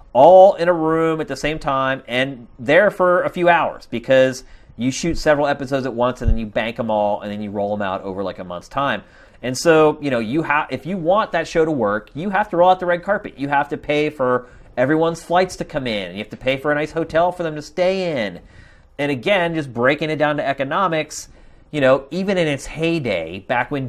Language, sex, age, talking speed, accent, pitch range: English, male, 30-49, 250 wpm, American, 130-180 Hz